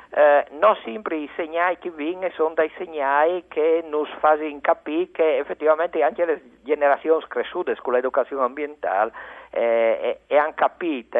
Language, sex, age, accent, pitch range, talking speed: Italian, male, 50-69, native, 150-210 Hz, 145 wpm